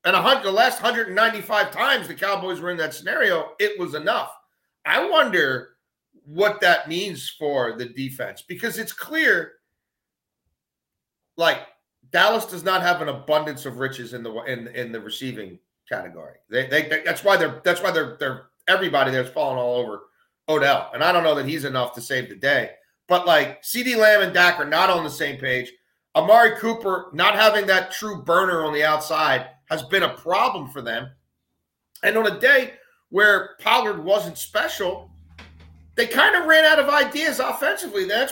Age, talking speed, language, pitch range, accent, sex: 40-59, 180 wpm, English, 150-230 Hz, American, male